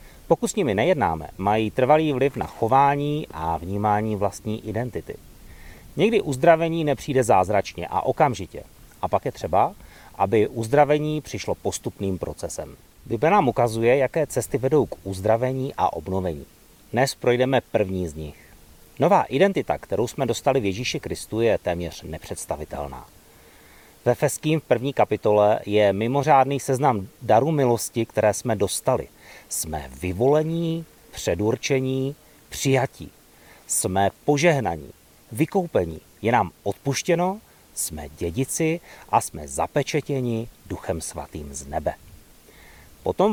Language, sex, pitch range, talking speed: Czech, male, 90-140 Hz, 120 wpm